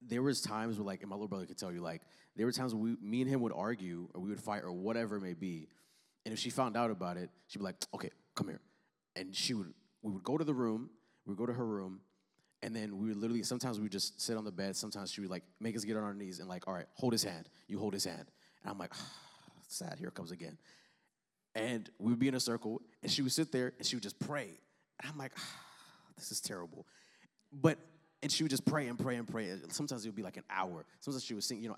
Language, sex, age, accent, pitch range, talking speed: English, male, 30-49, American, 95-125 Hz, 280 wpm